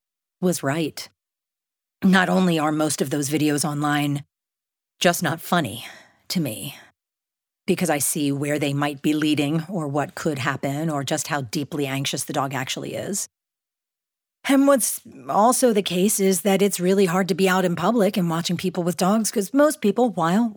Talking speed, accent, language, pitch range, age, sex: 175 wpm, American, English, 155-215 Hz, 40-59, female